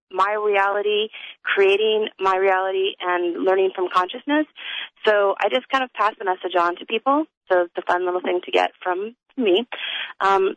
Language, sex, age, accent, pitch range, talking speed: English, female, 30-49, American, 180-245 Hz, 175 wpm